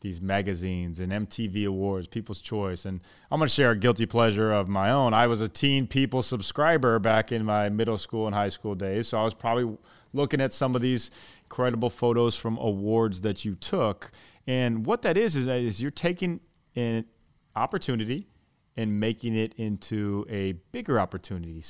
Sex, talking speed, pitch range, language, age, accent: male, 185 wpm, 100-125 Hz, English, 30-49, American